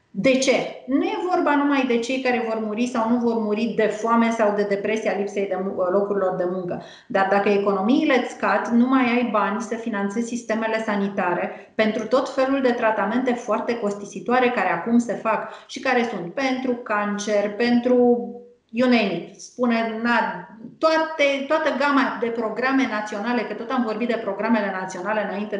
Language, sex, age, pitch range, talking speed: Romanian, female, 30-49, 205-255 Hz, 165 wpm